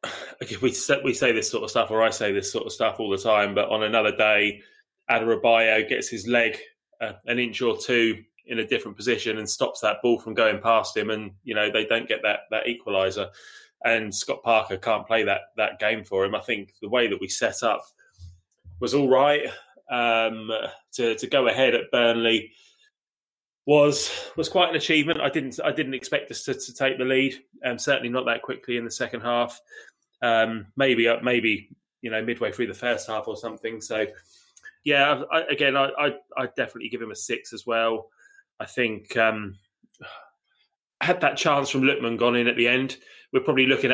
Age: 20-39